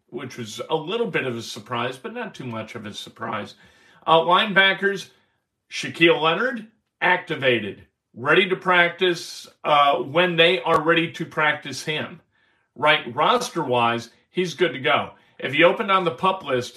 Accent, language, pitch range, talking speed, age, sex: American, English, 130-185 Hz, 155 wpm, 50-69, male